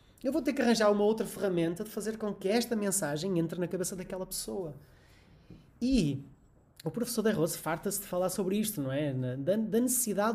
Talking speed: 190 wpm